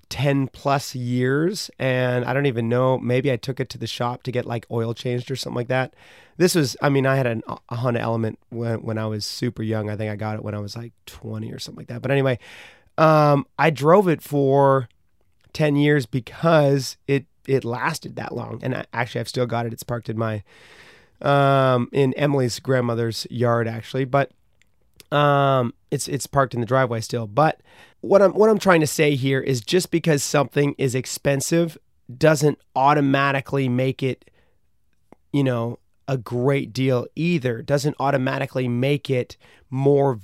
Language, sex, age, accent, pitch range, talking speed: English, male, 30-49, American, 120-145 Hz, 185 wpm